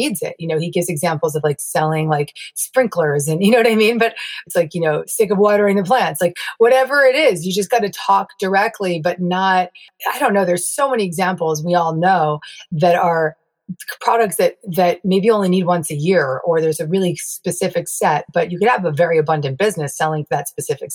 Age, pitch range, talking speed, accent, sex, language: 30-49, 155-200 Hz, 225 wpm, American, female, English